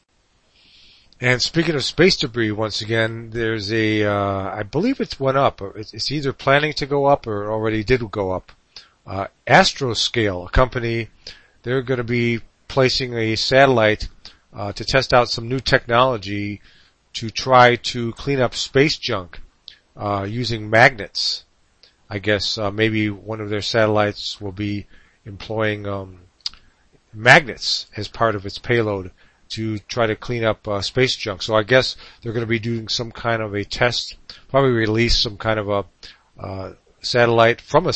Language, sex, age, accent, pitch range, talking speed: English, male, 40-59, American, 100-120 Hz, 165 wpm